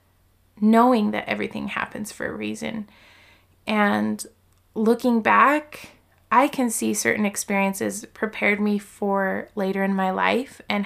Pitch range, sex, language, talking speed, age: 200-240 Hz, female, English, 125 wpm, 20-39